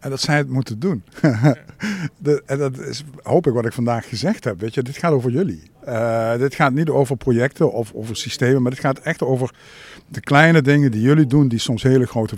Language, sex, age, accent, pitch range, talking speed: Dutch, male, 50-69, Dutch, 110-140 Hz, 225 wpm